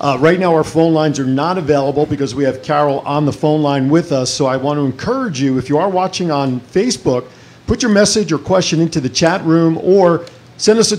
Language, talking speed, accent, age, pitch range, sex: English, 240 wpm, American, 50-69, 140-170 Hz, male